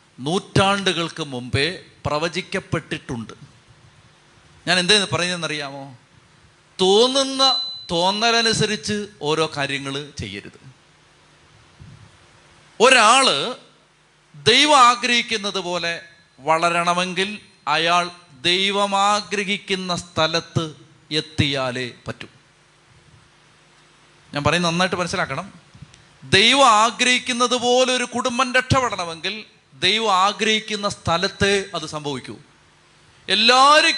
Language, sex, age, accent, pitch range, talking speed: Malayalam, male, 30-49, native, 150-205 Hz, 65 wpm